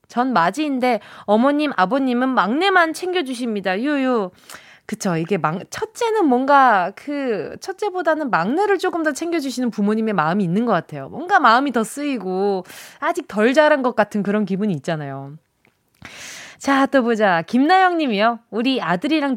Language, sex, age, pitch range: Korean, female, 20-39, 210-330 Hz